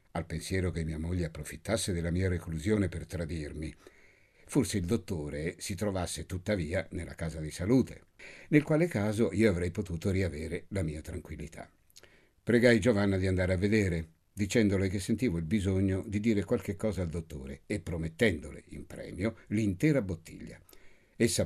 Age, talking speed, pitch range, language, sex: 60-79, 155 wpm, 80-110 Hz, Italian, male